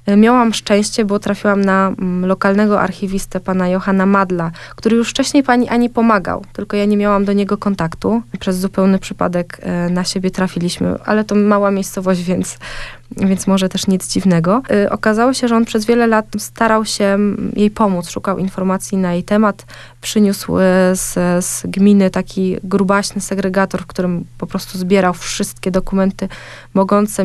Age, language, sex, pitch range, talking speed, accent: 20-39, Polish, female, 185-210 Hz, 155 wpm, native